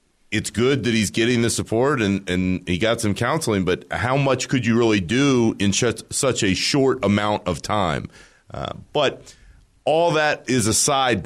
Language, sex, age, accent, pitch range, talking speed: English, male, 40-59, American, 100-130 Hz, 175 wpm